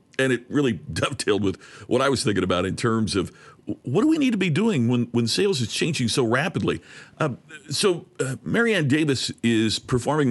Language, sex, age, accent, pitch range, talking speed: English, male, 50-69, American, 105-150 Hz, 200 wpm